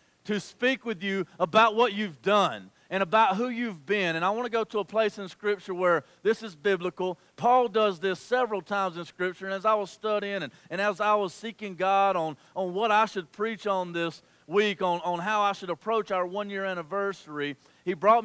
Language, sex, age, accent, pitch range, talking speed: English, male, 40-59, American, 155-210 Hz, 220 wpm